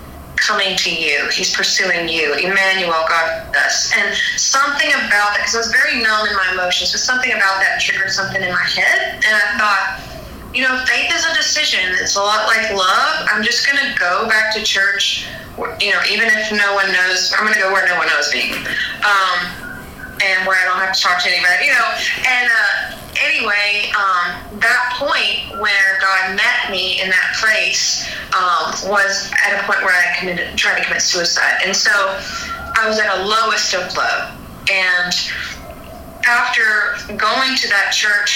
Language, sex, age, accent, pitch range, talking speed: English, female, 20-39, American, 185-215 Hz, 185 wpm